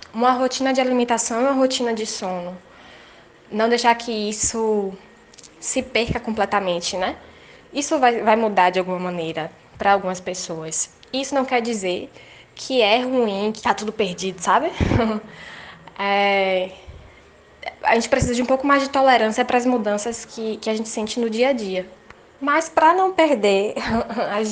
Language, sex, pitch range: Portuguese, female, 205-255 Hz